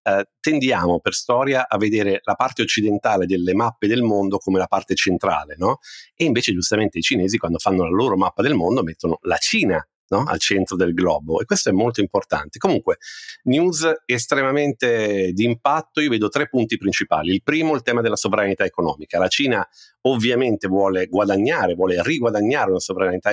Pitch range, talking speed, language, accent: 100-135 Hz, 175 wpm, Italian, native